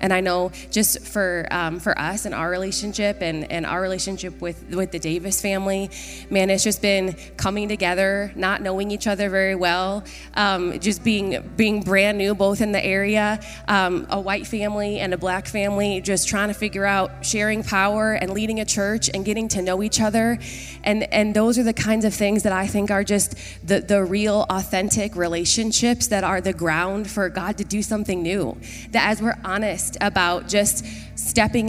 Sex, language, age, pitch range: female, English, 20-39, 185-210 Hz